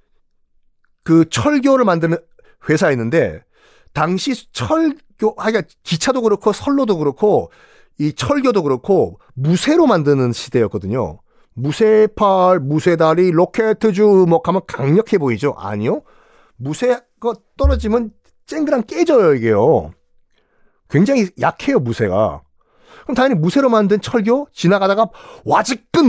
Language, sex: Korean, male